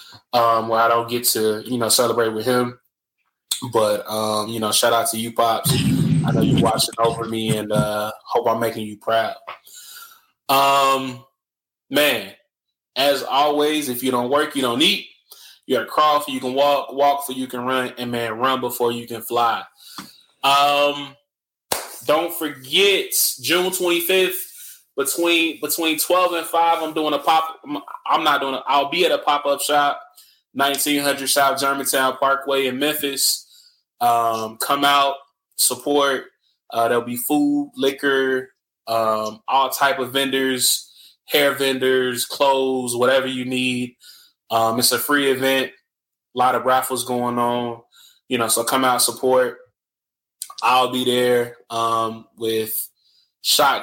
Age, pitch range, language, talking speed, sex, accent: 20-39, 120-145 Hz, English, 150 wpm, male, American